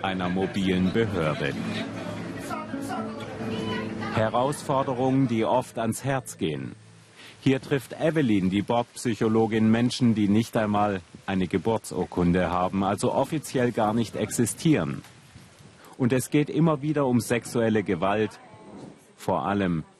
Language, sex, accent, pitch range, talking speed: German, male, German, 100-130 Hz, 110 wpm